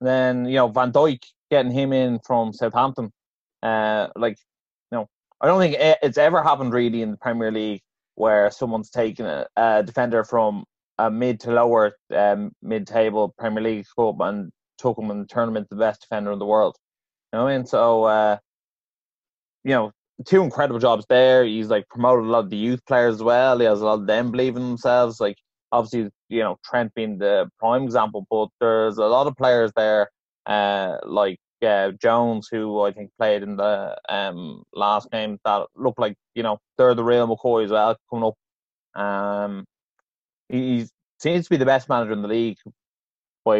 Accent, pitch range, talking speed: Irish, 105-125 Hz, 195 wpm